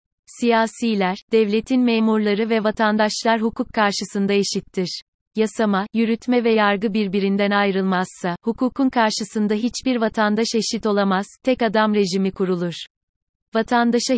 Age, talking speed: 30-49, 105 wpm